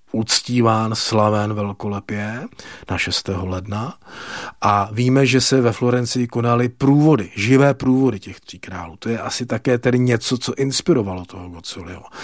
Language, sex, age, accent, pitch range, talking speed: Czech, male, 40-59, native, 100-125 Hz, 140 wpm